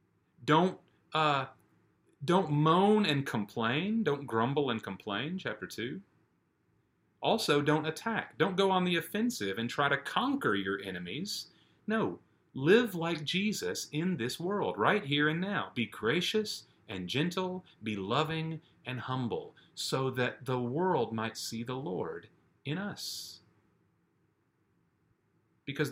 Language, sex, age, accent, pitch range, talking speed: English, male, 30-49, American, 110-160 Hz, 130 wpm